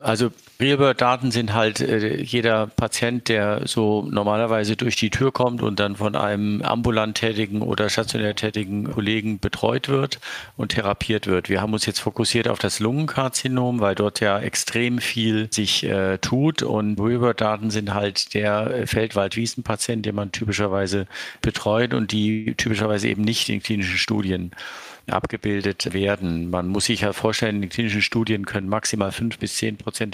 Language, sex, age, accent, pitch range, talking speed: German, male, 50-69, German, 100-115 Hz, 160 wpm